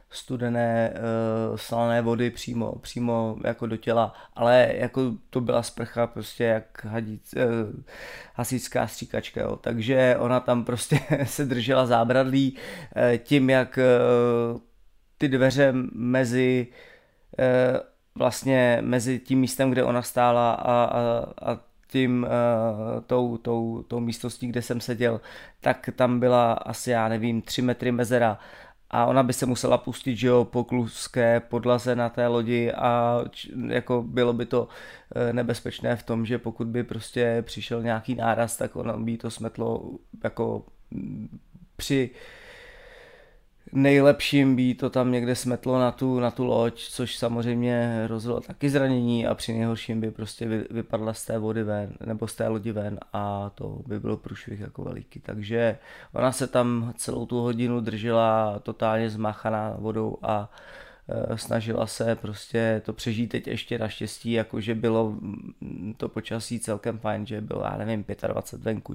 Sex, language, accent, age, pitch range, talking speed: male, Czech, native, 20-39, 115-125 Hz, 140 wpm